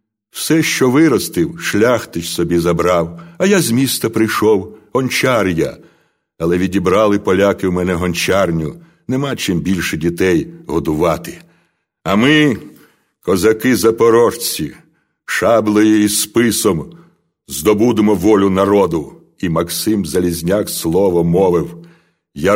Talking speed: 105 wpm